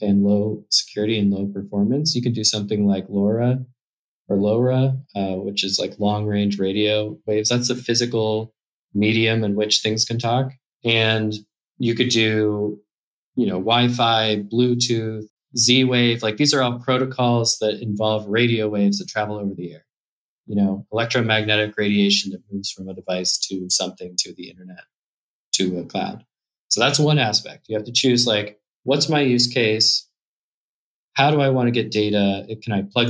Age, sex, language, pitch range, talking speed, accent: 20-39, male, English, 100-120 Hz, 170 wpm, American